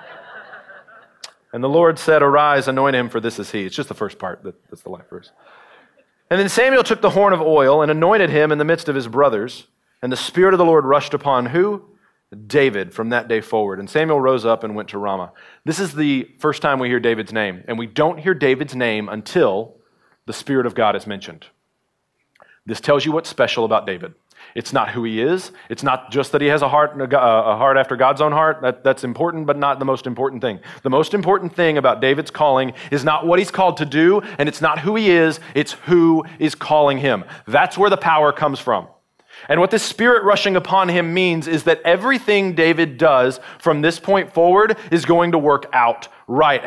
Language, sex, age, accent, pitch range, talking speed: English, male, 40-59, American, 130-175 Hz, 220 wpm